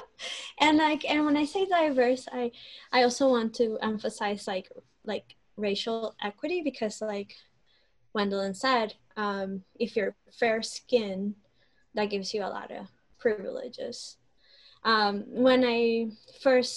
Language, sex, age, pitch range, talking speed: English, female, 10-29, 210-260 Hz, 130 wpm